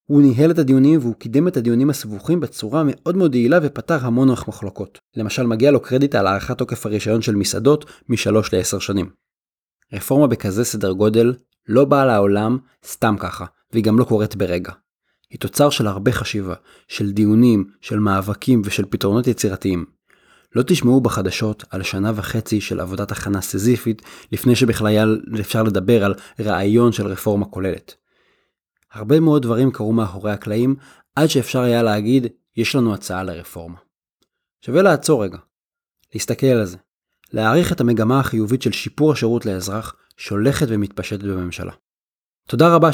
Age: 20-39